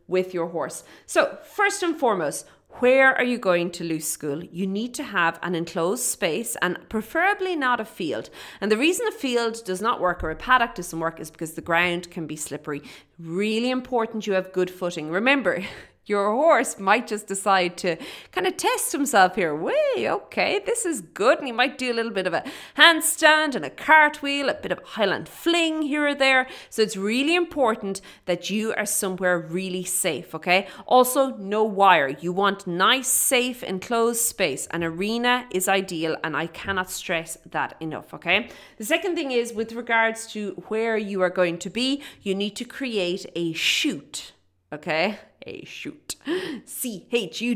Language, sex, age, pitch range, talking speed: English, female, 30-49, 180-255 Hz, 185 wpm